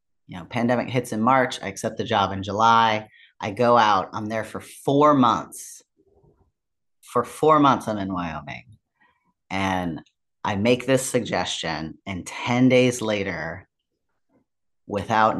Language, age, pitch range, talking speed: English, 30-49, 105-130 Hz, 140 wpm